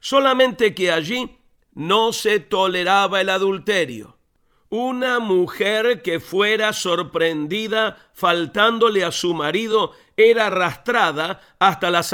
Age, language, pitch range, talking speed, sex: 50-69, Spanish, 180-225 Hz, 105 wpm, male